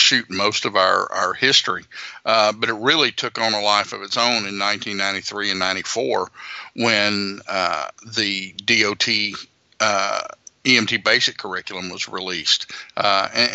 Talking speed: 145 wpm